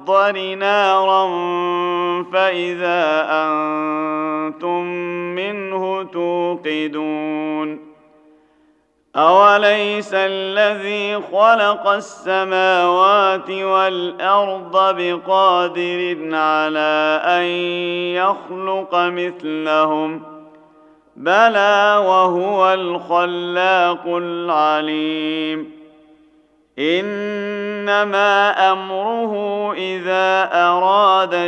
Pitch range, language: 155-190 Hz, Arabic